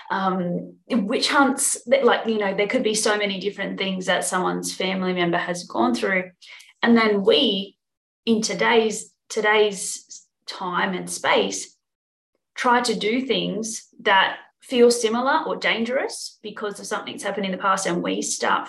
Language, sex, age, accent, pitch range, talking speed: English, female, 30-49, Australian, 180-230 Hz, 155 wpm